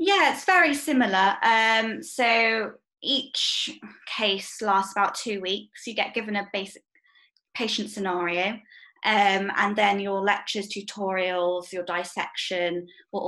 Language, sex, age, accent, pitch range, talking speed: English, female, 10-29, British, 190-230 Hz, 125 wpm